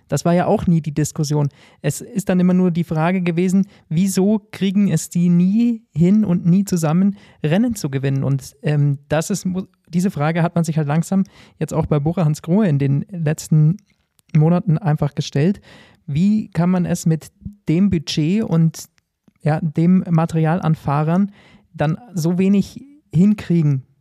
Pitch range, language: 150-180 Hz, German